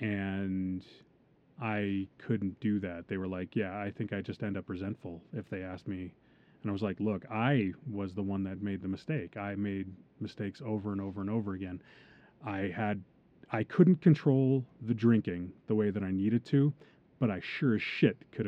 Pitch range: 95-120 Hz